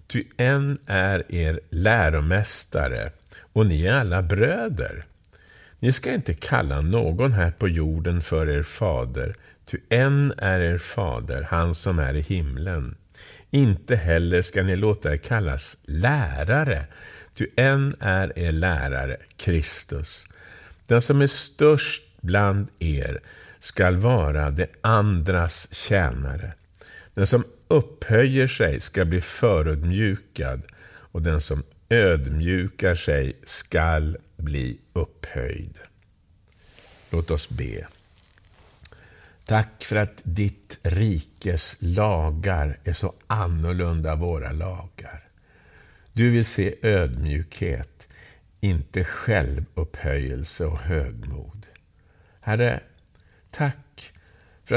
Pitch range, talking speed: 80-105 Hz, 105 wpm